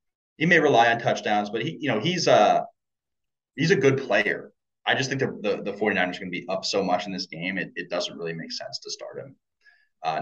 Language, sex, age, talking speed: English, male, 20-39, 255 wpm